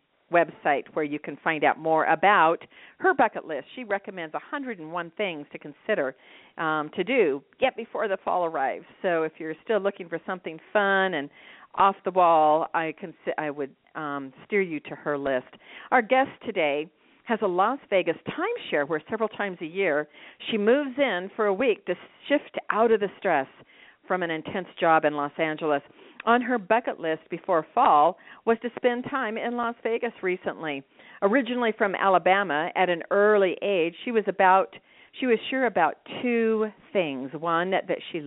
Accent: American